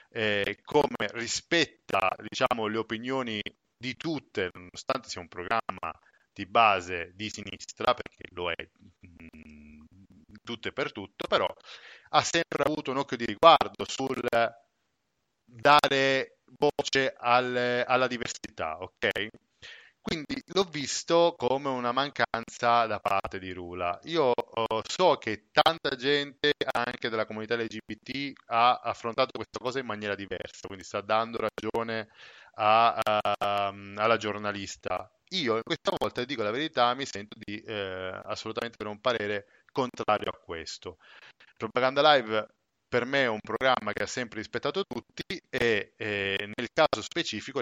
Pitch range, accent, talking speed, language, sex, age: 105-130 Hz, native, 135 wpm, Italian, male, 30-49